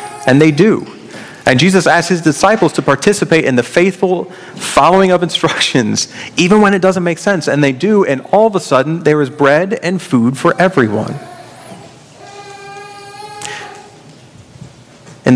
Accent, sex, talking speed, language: American, male, 150 wpm, English